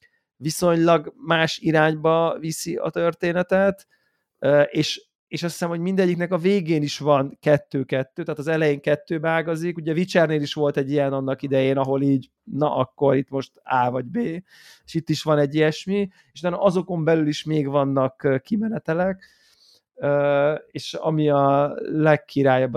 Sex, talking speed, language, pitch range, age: male, 150 wpm, Hungarian, 140-165 Hz, 30-49